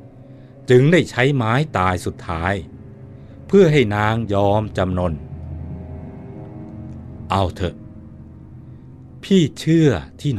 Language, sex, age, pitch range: Thai, male, 60-79, 95-120 Hz